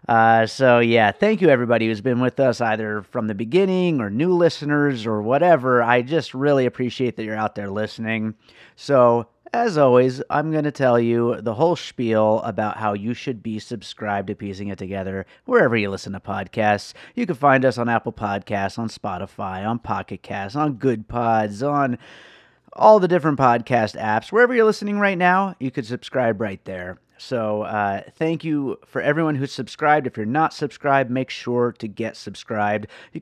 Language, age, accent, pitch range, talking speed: English, 30-49, American, 105-140 Hz, 185 wpm